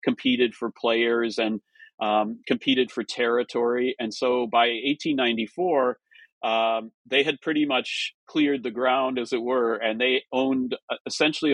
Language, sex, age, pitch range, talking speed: English, male, 40-59, 115-130 Hz, 140 wpm